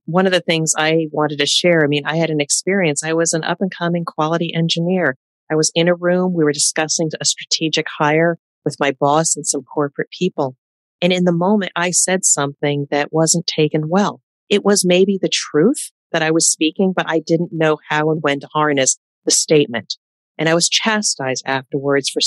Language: English